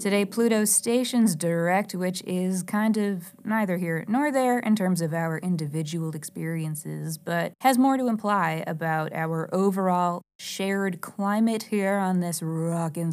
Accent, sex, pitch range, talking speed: American, female, 175-210 Hz, 150 wpm